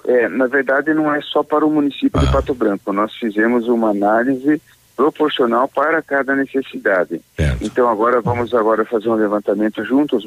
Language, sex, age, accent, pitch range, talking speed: Portuguese, male, 40-59, Brazilian, 110-135 Hz, 160 wpm